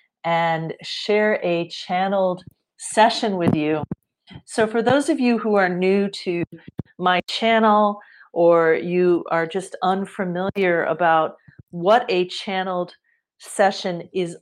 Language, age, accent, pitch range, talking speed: English, 40-59, American, 170-210 Hz, 120 wpm